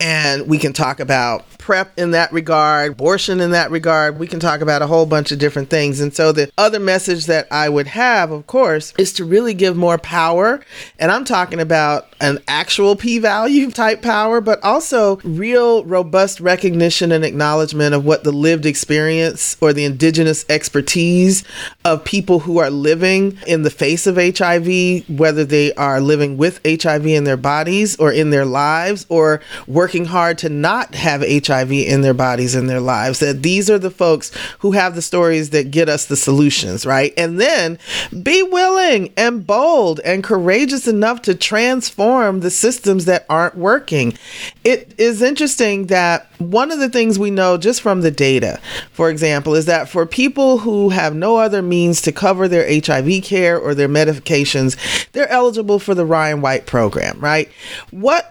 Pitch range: 150-200 Hz